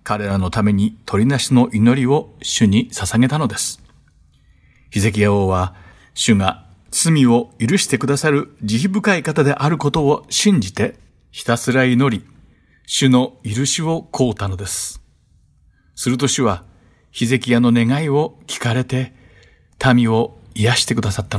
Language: Japanese